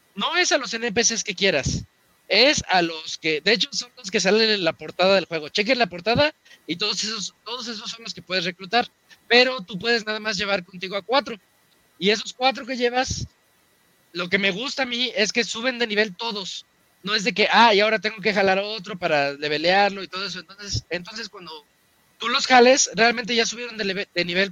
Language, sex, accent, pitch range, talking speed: Spanish, male, Mexican, 180-230 Hz, 220 wpm